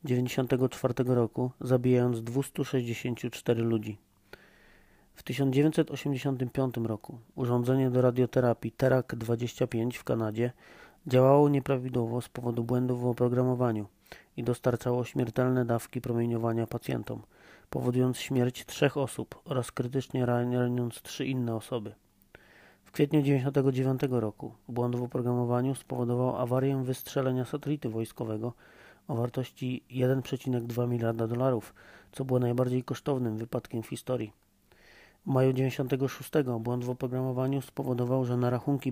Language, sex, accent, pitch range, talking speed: Polish, male, native, 120-130 Hz, 110 wpm